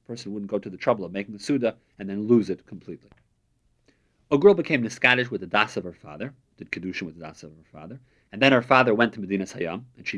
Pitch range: 95-120 Hz